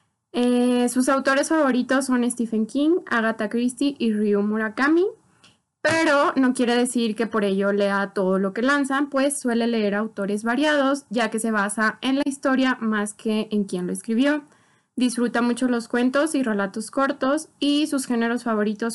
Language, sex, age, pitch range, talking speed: Spanish, female, 20-39, 215-265 Hz, 170 wpm